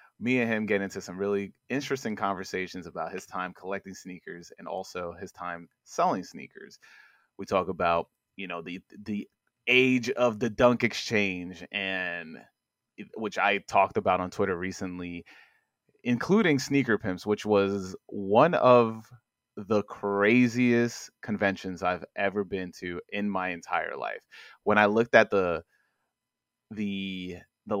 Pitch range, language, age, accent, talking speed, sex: 95-115 Hz, English, 30-49, American, 140 wpm, male